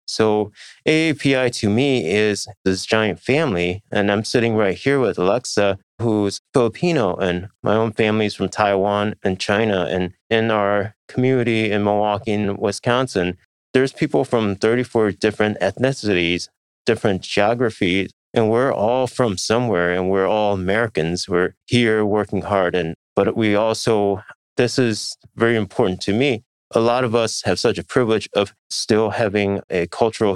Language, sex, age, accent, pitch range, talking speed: English, male, 30-49, American, 95-115 Hz, 155 wpm